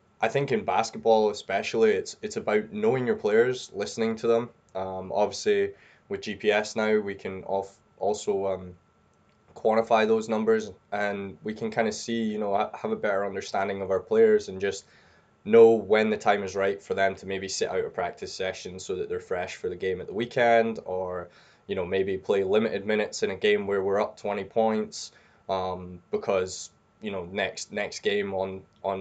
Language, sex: English, male